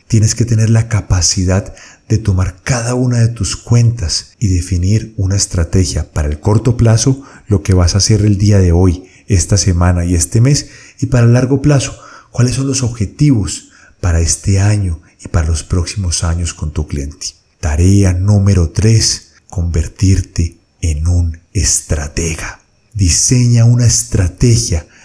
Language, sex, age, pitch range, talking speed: Spanish, male, 40-59, 90-115 Hz, 155 wpm